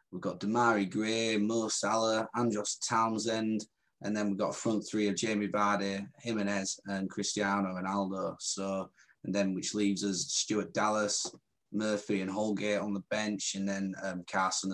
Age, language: 20-39, English